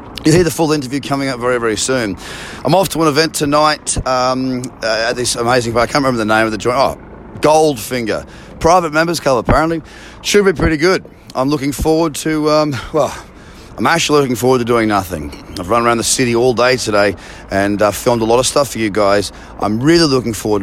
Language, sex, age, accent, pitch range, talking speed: English, male, 30-49, Australian, 110-145 Hz, 215 wpm